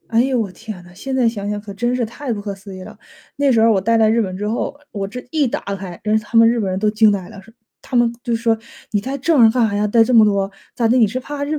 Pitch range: 210-265 Hz